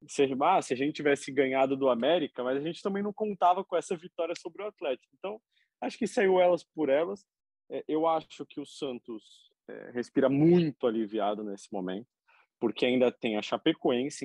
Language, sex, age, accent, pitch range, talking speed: Portuguese, male, 20-39, Brazilian, 120-175 Hz, 190 wpm